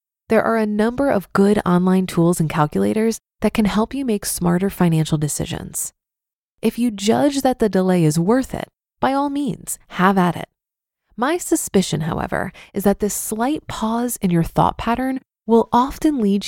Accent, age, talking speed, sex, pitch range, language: American, 20-39, 175 wpm, female, 180-240 Hz, English